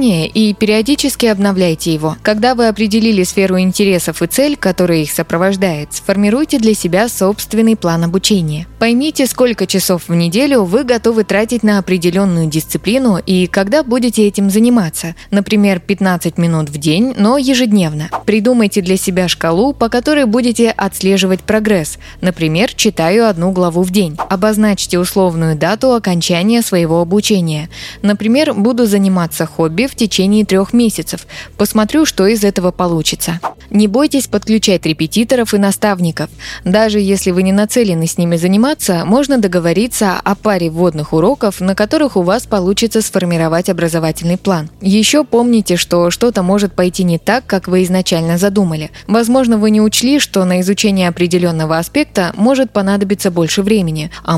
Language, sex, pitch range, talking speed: Russian, female, 175-225 Hz, 145 wpm